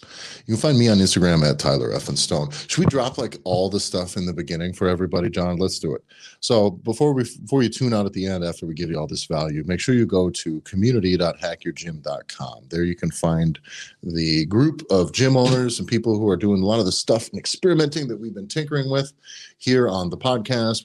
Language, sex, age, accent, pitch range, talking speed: English, male, 30-49, American, 85-115 Hz, 225 wpm